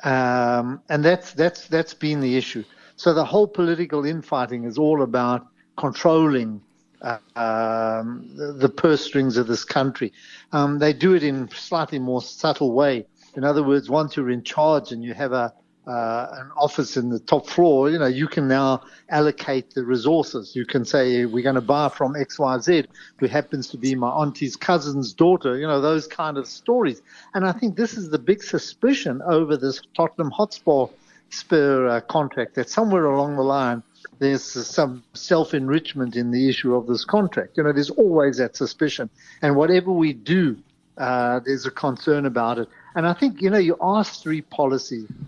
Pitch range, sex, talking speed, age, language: 125-155 Hz, male, 185 wpm, 60-79, English